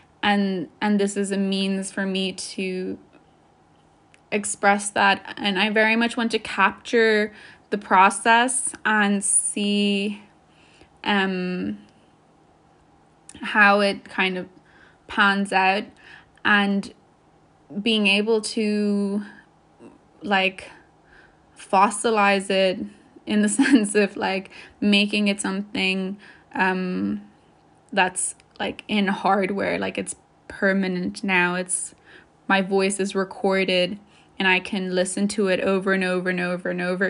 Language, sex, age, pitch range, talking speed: English, female, 10-29, 190-210 Hz, 115 wpm